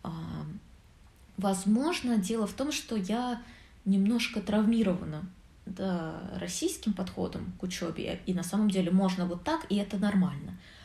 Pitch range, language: 180-215 Hz, Russian